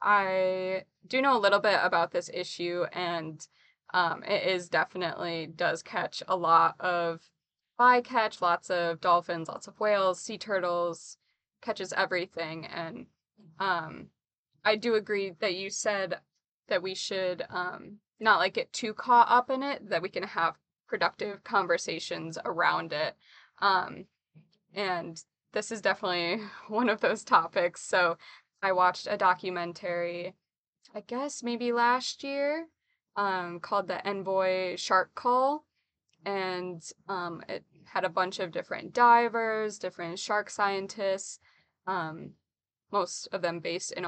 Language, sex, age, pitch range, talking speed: English, female, 20-39, 175-205 Hz, 140 wpm